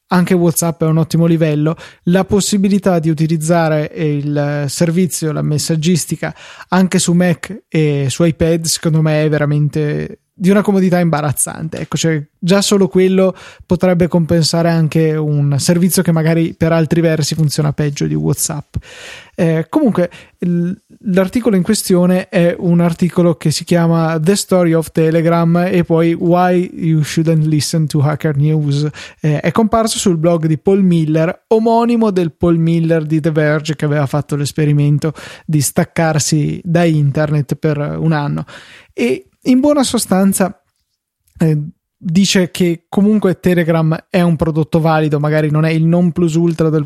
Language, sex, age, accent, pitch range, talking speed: Italian, male, 20-39, native, 155-180 Hz, 150 wpm